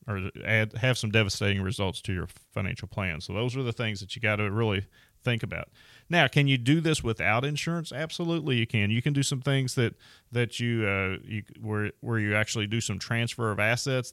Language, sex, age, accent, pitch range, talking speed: English, male, 30-49, American, 100-120 Hz, 215 wpm